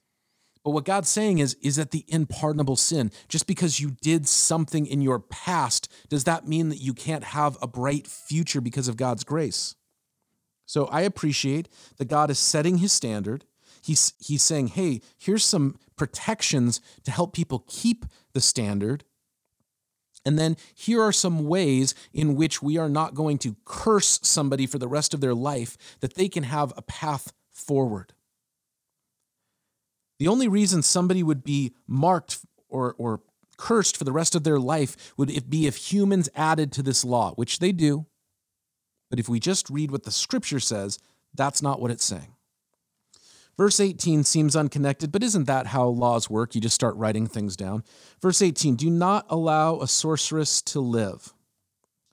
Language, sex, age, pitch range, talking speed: English, male, 40-59, 125-165 Hz, 170 wpm